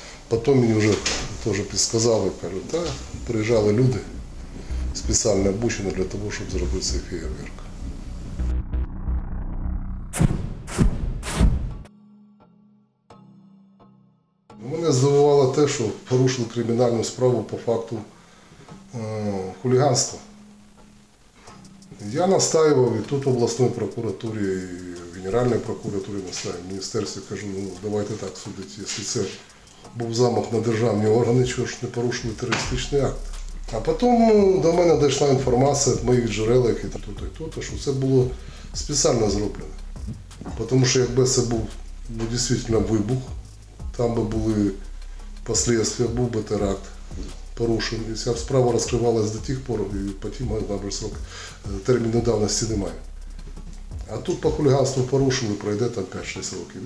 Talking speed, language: 120 wpm, Ukrainian